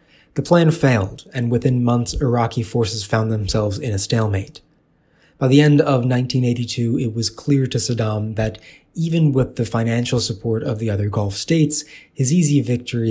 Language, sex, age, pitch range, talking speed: English, male, 20-39, 110-140 Hz, 170 wpm